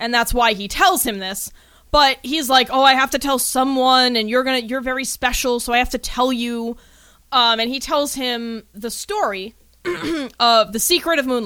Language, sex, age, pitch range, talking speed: English, female, 20-39, 200-265 Hz, 205 wpm